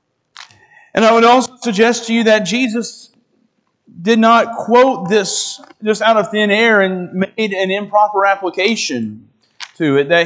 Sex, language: male, English